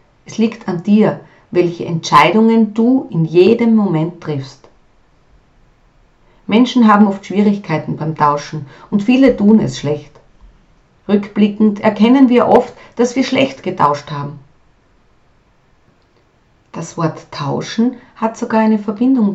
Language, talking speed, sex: German, 120 wpm, female